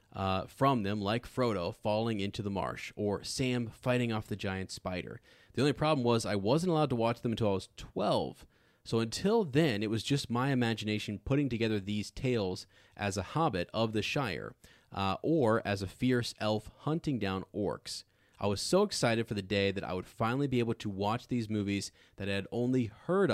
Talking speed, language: 205 wpm, English